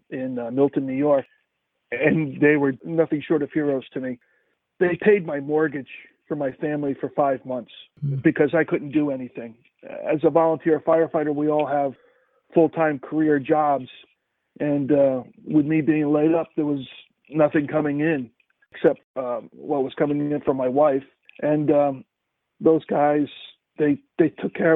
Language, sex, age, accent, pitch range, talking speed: English, male, 40-59, American, 140-160 Hz, 165 wpm